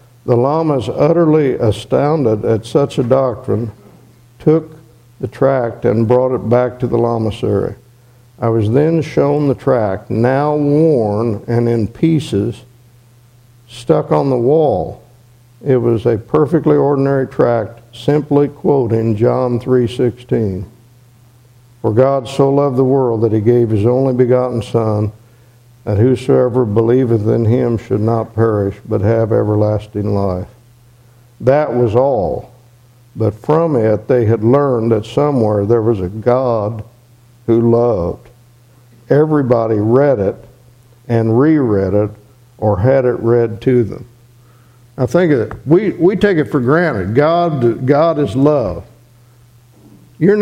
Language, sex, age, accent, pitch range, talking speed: English, male, 50-69, American, 115-135 Hz, 135 wpm